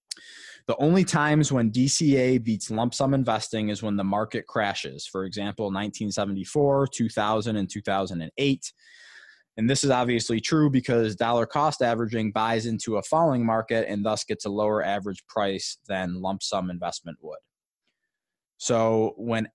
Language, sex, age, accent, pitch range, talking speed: English, male, 20-39, American, 105-125 Hz, 145 wpm